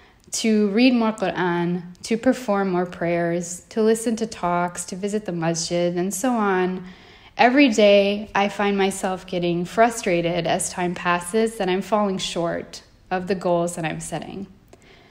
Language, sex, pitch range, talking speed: English, female, 175-220 Hz, 155 wpm